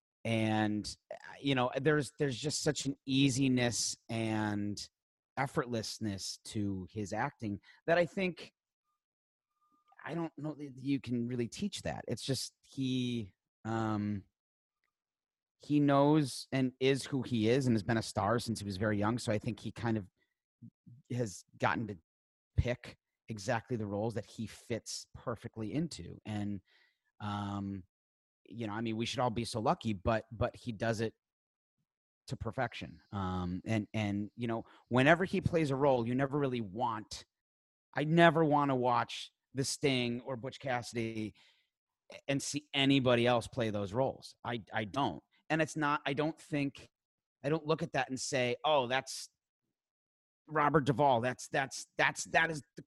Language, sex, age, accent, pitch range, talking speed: English, male, 30-49, American, 110-140 Hz, 160 wpm